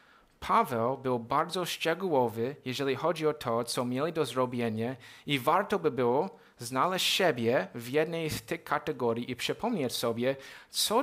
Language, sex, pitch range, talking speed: Polish, male, 120-150 Hz, 145 wpm